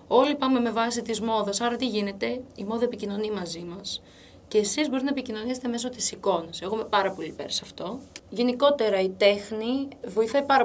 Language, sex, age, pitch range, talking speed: Greek, female, 20-39, 190-245 Hz, 190 wpm